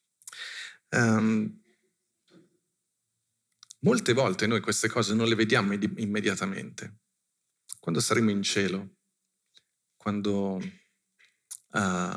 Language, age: Italian, 40-59